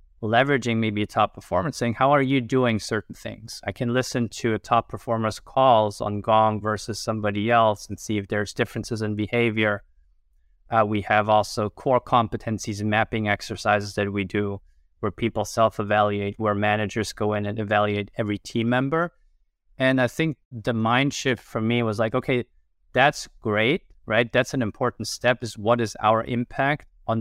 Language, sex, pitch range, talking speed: English, male, 105-120 Hz, 175 wpm